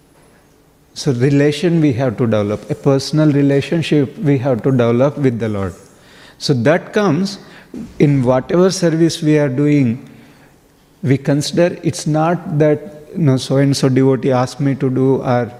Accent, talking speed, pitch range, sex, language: Indian, 150 wpm, 130-160 Hz, male, English